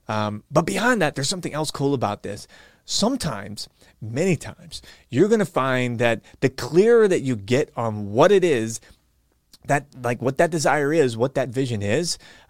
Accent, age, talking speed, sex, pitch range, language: American, 30-49, 180 wpm, male, 115-170 Hz, English